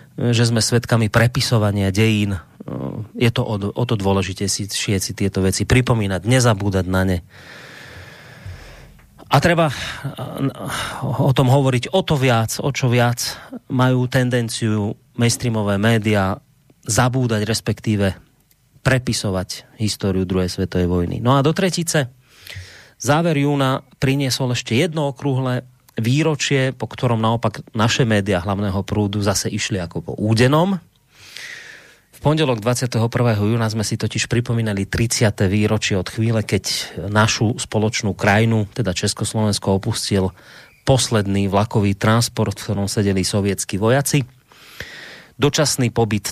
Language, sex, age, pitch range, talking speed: Slovak, male, 30-49, 100-130 Hz, 120 wpm